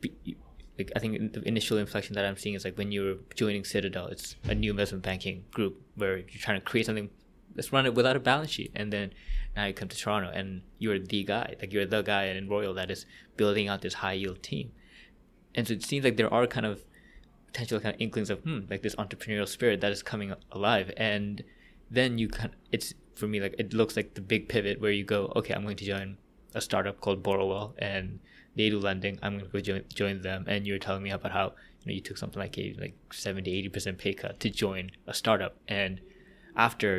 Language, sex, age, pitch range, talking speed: English, male, 20-39, 100-110 Hz, 235 wpm